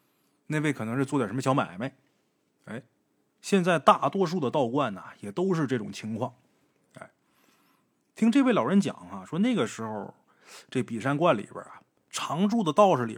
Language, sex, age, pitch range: Chinese, male, 30-49, 140-220 Hz